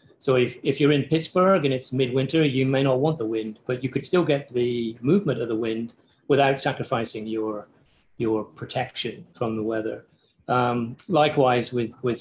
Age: 40-59